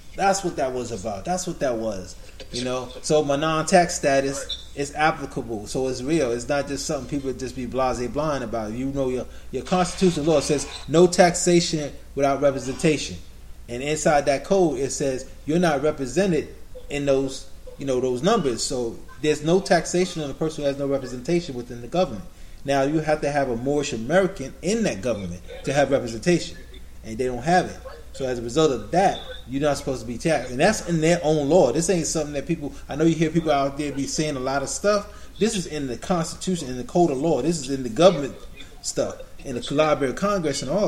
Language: Japanese